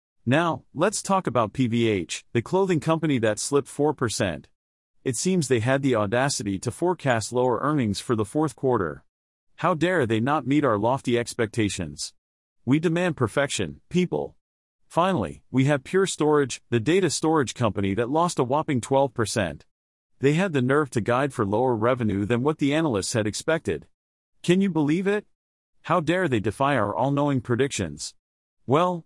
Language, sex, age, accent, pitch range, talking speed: English, male, 40-59, American, 110-155 Hz, 160 wpm